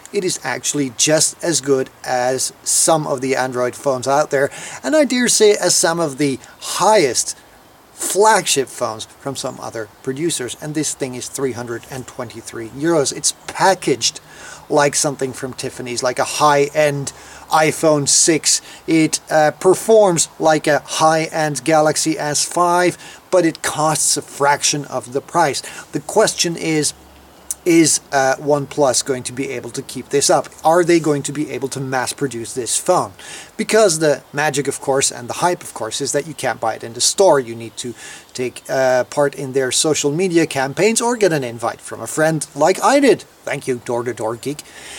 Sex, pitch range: male, 130-165 Hz